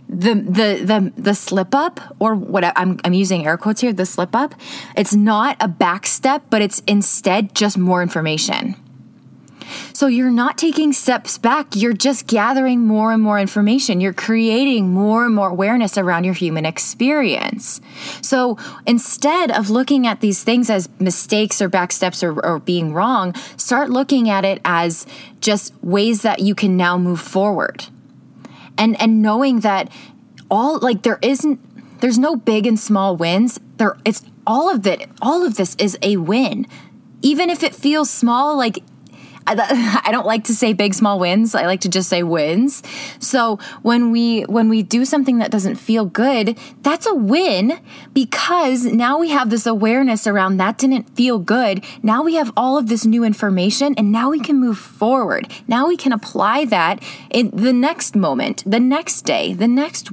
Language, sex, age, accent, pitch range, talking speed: English, female, 20-39, American, 200-260 Hz, 180 wpm